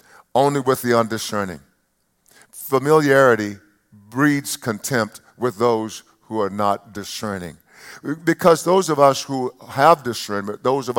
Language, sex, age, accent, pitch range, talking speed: English, male, 50-69, American, 105-140 Hz, 120 wpm